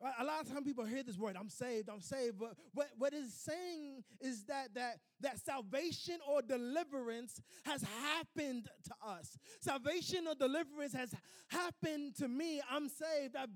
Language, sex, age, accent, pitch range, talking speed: English, male, 20-39, American, 220-290 Hz, 170 wpm